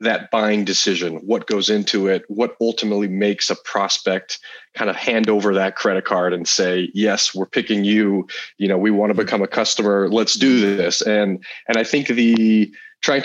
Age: 30-49